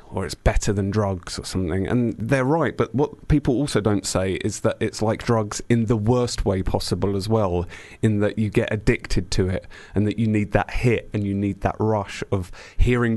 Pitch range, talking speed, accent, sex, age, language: 100-120 Hz, 220 wpm, British, male, 30-49, English